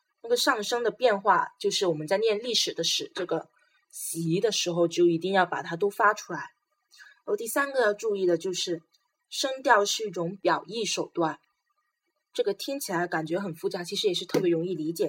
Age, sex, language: 20-39, female, Chinese